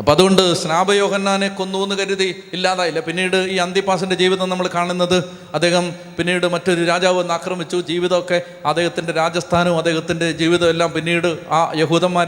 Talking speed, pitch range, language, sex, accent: 130 wpm, 160-195 Hz, Malayalam, male, native